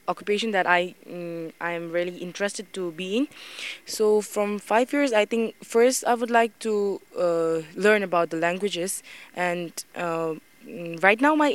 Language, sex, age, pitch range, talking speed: English, female, 20-39, 175-205 Hz, 160 wpm